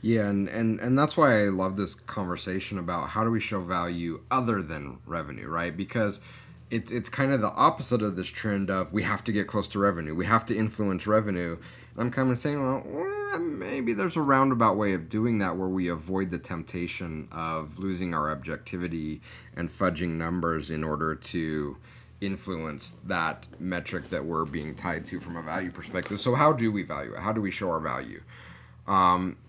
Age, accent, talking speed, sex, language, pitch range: 30-49, American, 195 wpm, male, English, 85-115 Hz